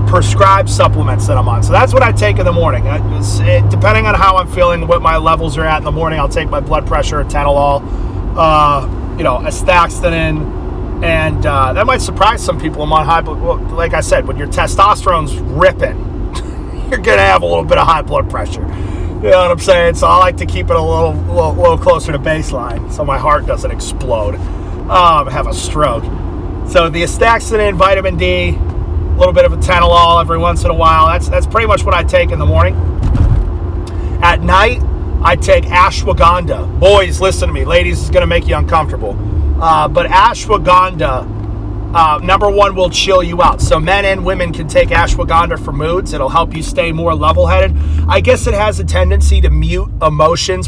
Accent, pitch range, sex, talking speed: American, 80-110 Hz, male, 200 wpm